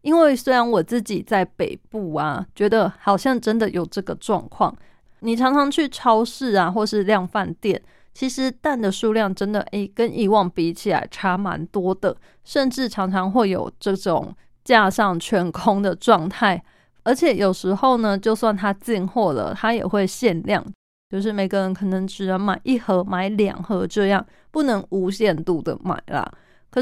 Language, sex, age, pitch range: Chinese, female, 20-39, 190-235 Hz